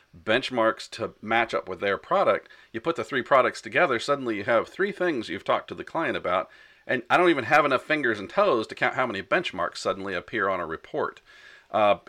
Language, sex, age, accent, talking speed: English, male, 40-59, American, 220 wpm